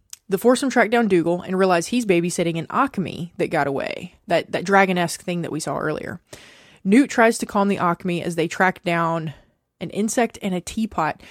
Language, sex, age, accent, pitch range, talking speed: English, female, 20-39, American, 170-215 Hz, 195 wpm